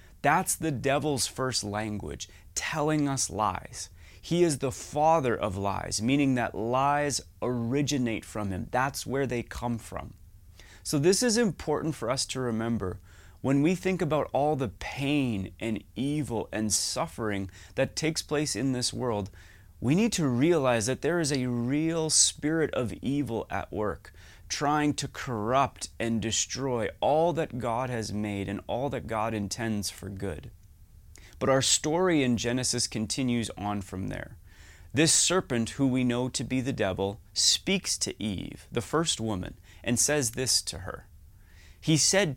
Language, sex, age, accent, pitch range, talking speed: English, male, 30-49, American, 100-145 Hz, 160 wpm